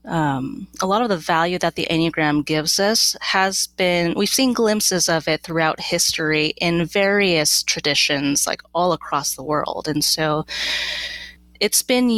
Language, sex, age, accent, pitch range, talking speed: English, female, 30-49, American, 155-190 Hz, 160 wpm